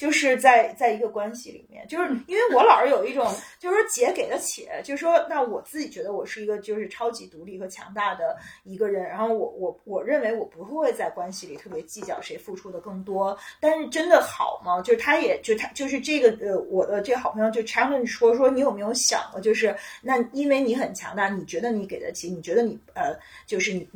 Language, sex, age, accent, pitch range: Chinese, female, 30-49, native, 215-295 Hz